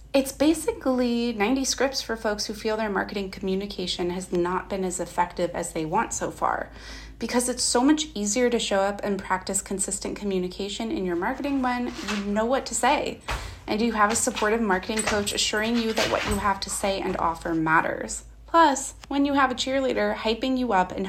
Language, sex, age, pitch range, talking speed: English, female, 30-49, 190-255 Hz, 200 wpm